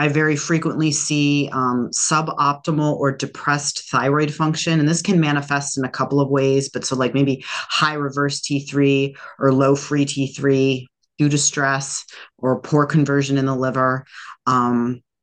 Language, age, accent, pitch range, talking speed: English, 30-49, American, 135-165 Hz, 160 wpm